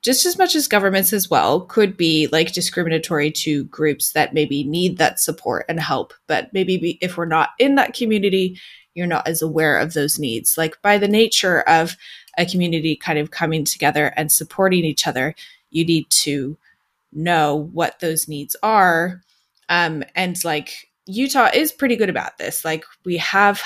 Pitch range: 160-210 Hz